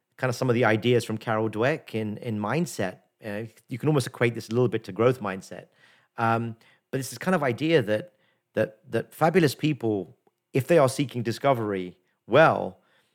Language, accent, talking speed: English, British, 190 wpm